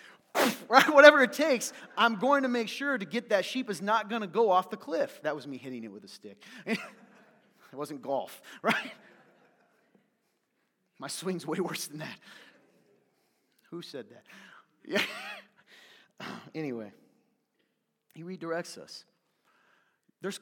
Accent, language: American, English